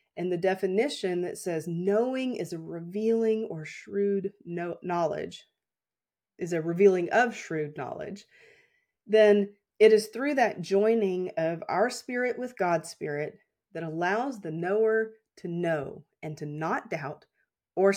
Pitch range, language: 170-220 Hz, English